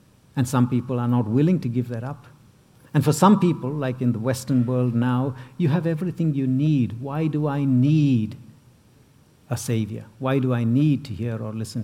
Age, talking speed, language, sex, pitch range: 60-79, 200 wpm, English, male, 125-155 Hz